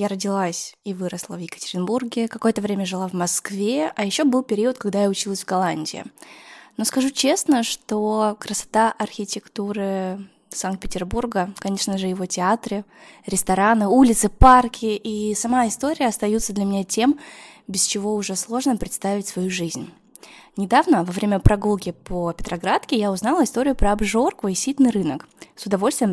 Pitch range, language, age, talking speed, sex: 190-250 Hz, Russian, 20-39, 145 wpm, female